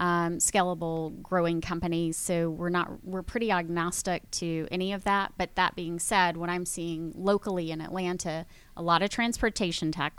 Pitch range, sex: 165-185 Hz, female